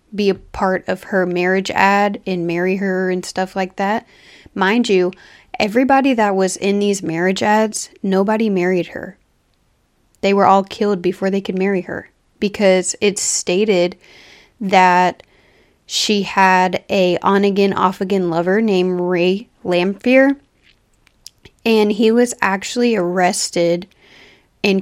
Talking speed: 130 wpm